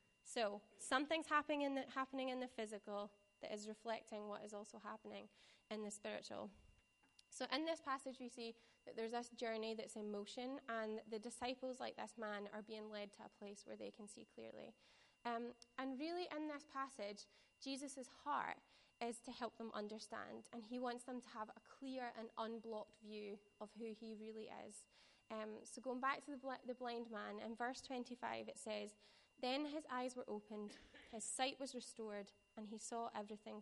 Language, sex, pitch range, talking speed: English, female, 215-250 Hz, 185 wpm